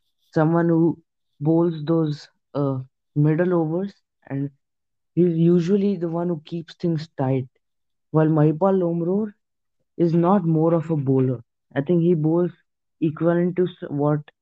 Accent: Indian